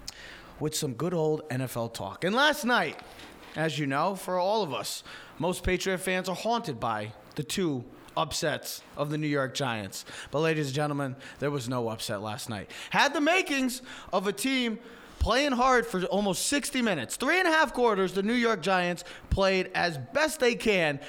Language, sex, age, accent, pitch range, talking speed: English, male, 20-39, American, 130-210 Hz, 190 wpm